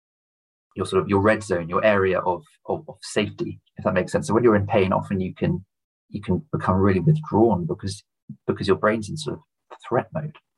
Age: 40-59